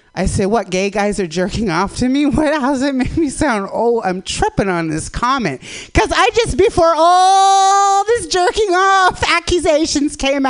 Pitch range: 250-350 Hz